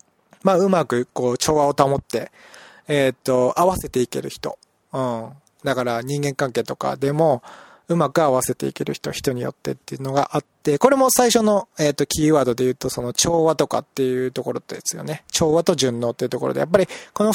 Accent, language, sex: native, Japanese, male